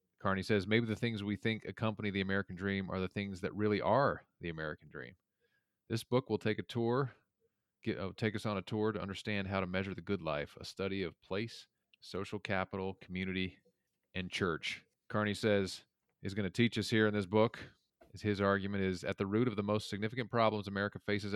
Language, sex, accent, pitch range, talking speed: English, male, American, 95-110 Hz, 205 wpm